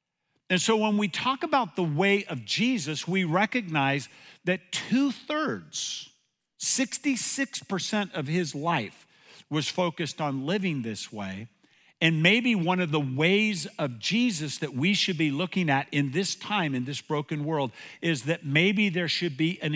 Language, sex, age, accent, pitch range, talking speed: English, male, 50-69, American, 125-180 Hz, 160 wpm